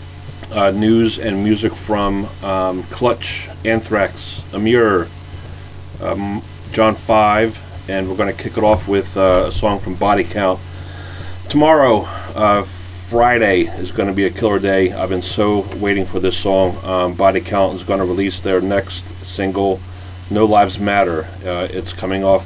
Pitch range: 90-100 Hz